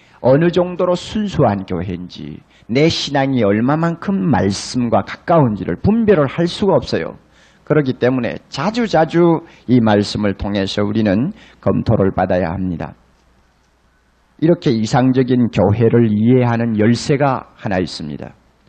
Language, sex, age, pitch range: Korean, male, 40-59, 100-140 Hz